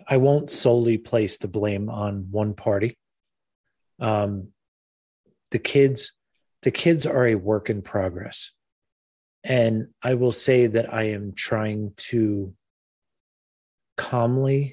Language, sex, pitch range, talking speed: English, male, 105-125 Hz, 120 wpm